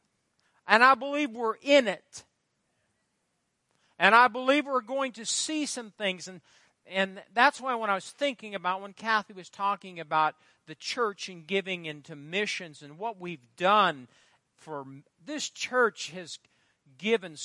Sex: male